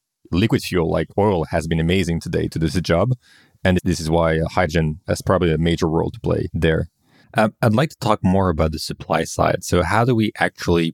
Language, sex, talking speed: English, male, 220 wpm